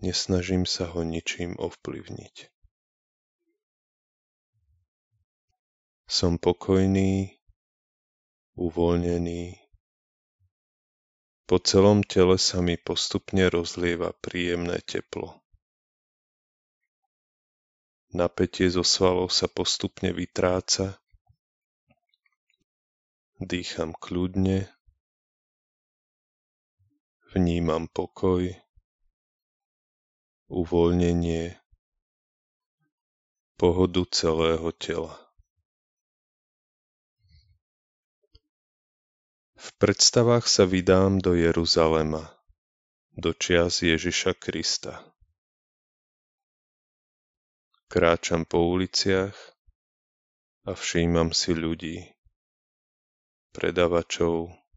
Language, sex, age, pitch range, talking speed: Slovak, male, 30-49, 80-95 Hz, 55 wpm